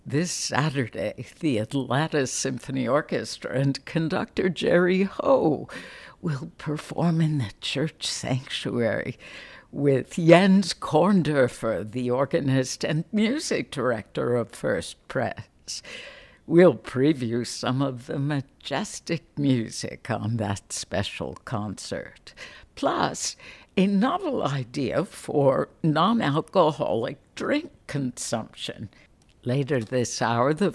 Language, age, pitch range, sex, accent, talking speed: English, 60-79, 125-175 Hz, female, American, 100 wpm